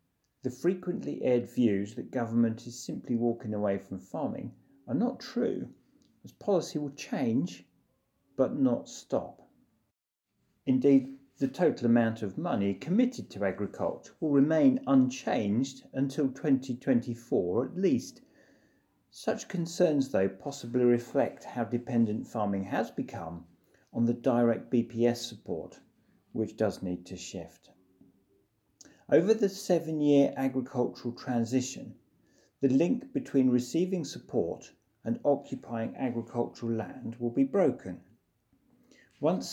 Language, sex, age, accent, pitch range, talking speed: English, male, 50-69, British, 115-155 Hz, 115 wpm